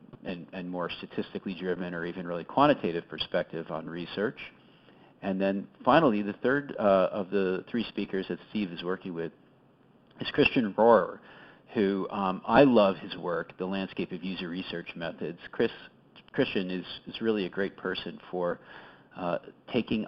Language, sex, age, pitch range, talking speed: English, male, 40-59, 85-100 Hz, 155 wpm